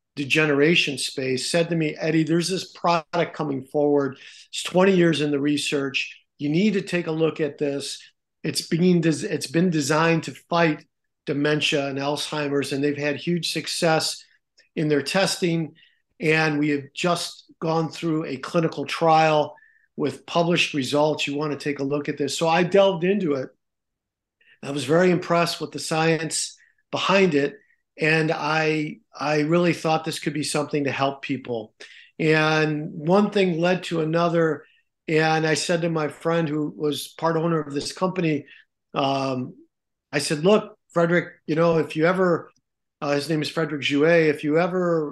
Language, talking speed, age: English, 170 wpm, 50-69